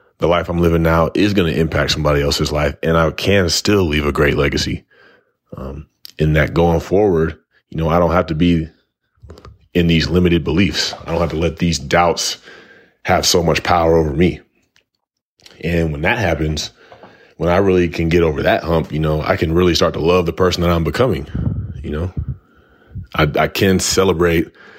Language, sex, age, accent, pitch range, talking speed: English, male, 30-49, American, 75-85 Hz, 195 wpm